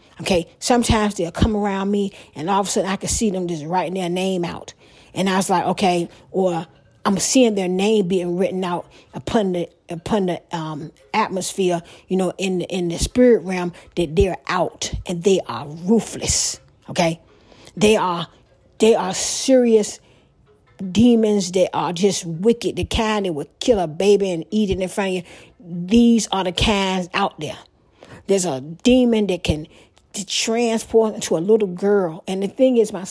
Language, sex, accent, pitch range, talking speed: English, female, American, 175-215 Hz, 185 wpm